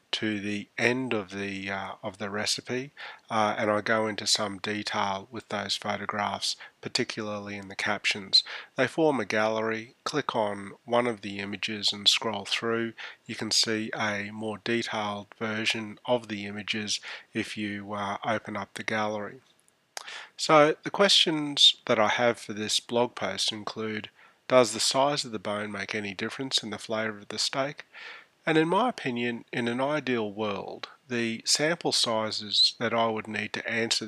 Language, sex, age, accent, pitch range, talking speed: English, male, 30-49, Australian, 105-120 Hz, 170 wpm